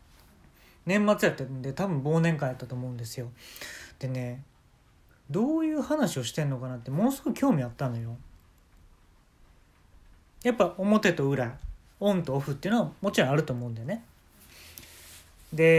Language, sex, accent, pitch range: Japanese, male, native, 115-165 Hz